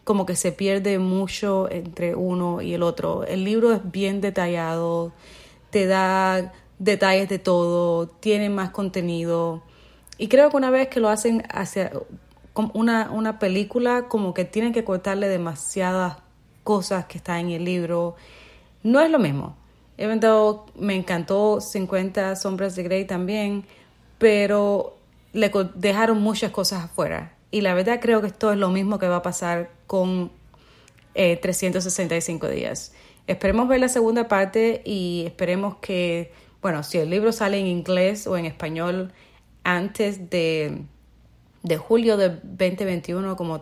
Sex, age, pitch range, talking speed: female, 30-49, 175-205 Hz, 145 wpm